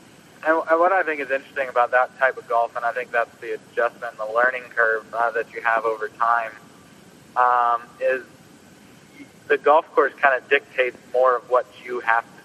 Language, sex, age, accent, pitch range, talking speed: English, male, 30-49, American, 115-165 Hz, 195 wpm